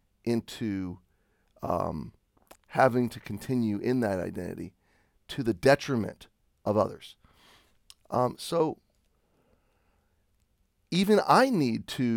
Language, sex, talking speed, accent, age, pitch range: English, male, 95 wpm, American, 40-59, 100-130 Hz